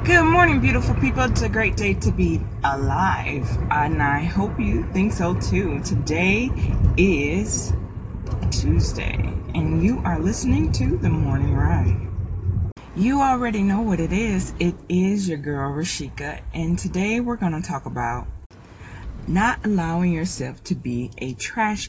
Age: 20-39